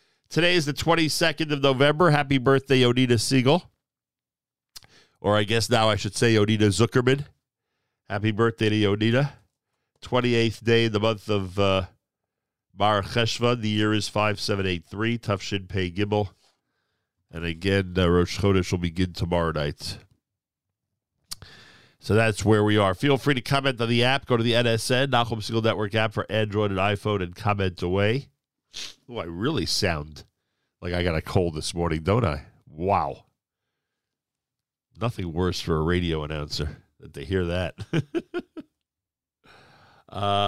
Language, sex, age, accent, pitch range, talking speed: English, male, 50-69, American, 95-125 Hz, 150 wpm